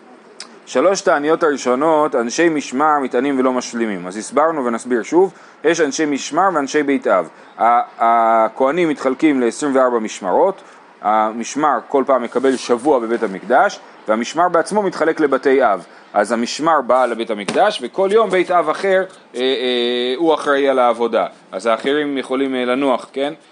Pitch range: 125-165 Hz